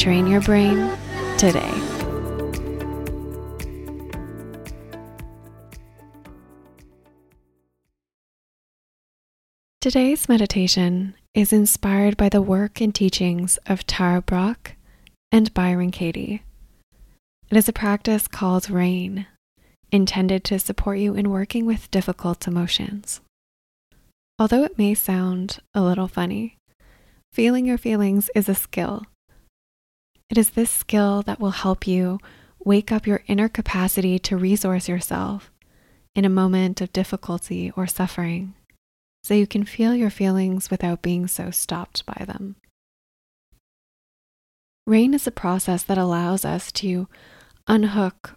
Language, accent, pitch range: English, American, 170-205 Hz